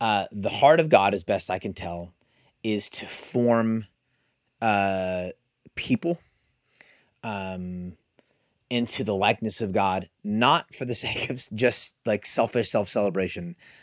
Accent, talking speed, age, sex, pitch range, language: American, 130 wpm, 30-49, male, 95-125 Hz, English